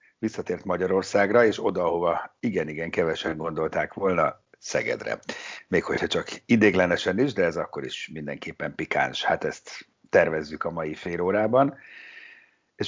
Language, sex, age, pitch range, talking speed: Hungarian, male, 50-69, 90-115 Hz, 135 wpm